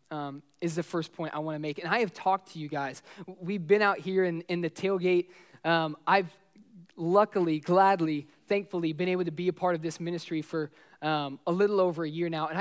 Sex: male